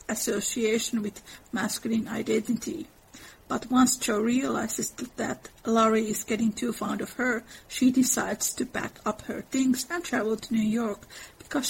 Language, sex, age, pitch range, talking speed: English, female, 50-69, 220-250 Hz, 150 wpm